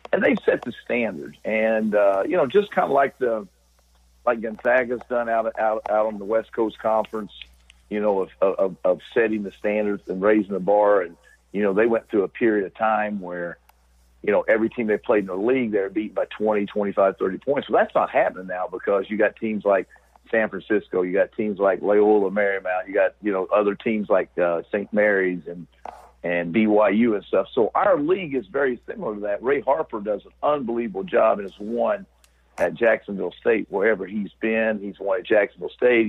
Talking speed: 215 wpm